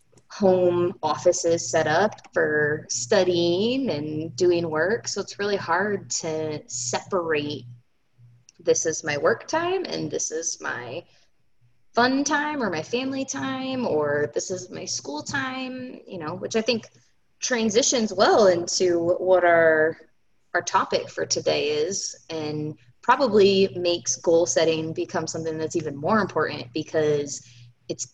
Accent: American